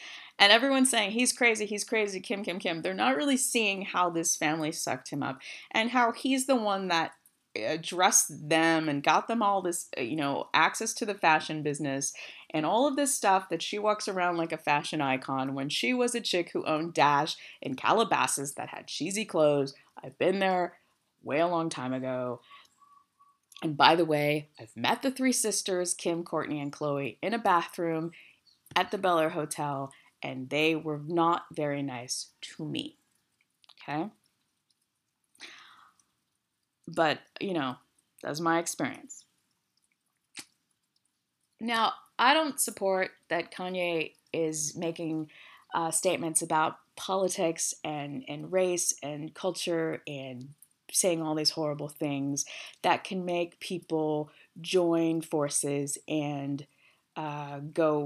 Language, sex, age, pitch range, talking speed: English, female, 30-49, 150-190 Hz, 150 wpm